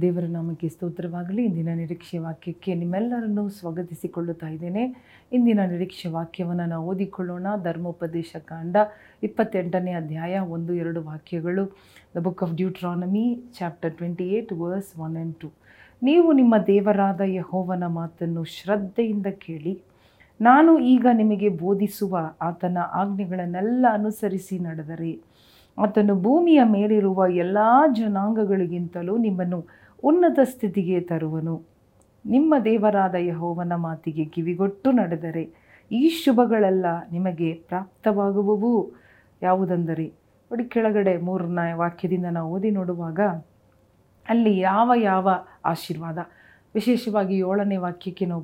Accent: native